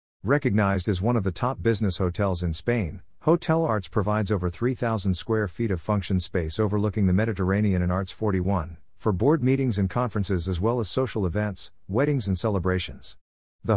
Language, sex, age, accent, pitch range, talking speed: English, male, 50-69, American, 90-115 Hz, 175 wpm